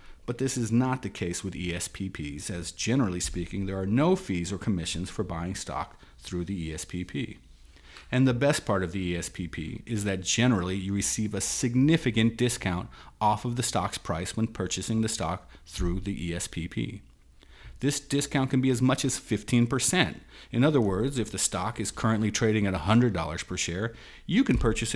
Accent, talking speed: American, 180 wpm